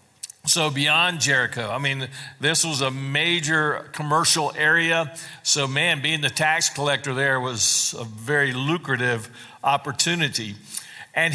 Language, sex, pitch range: English, male, 135-175 Hz